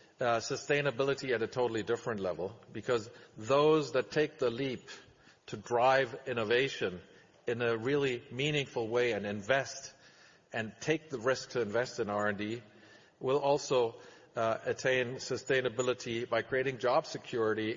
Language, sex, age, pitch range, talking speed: English, male, 50-69, 110-130 Hz, 135 wpm